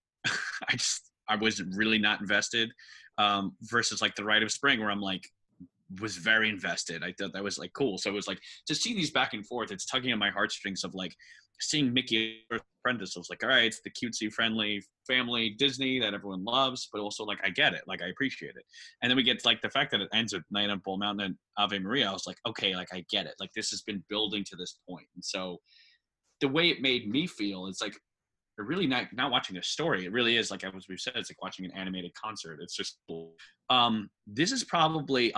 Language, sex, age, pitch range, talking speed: English, male, 20-39, 95-125 Hz, 240 wpm